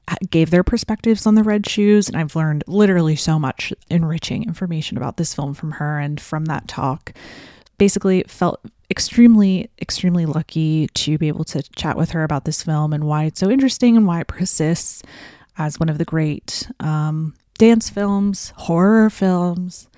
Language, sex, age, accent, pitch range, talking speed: English, female, 30-49, American, 155-205 Hz, 175 wpm